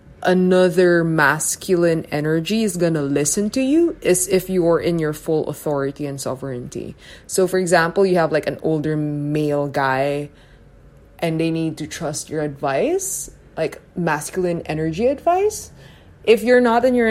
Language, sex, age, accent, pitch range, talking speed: English, female, 20-39, Filipino, 145-185 Hz, 160 wpm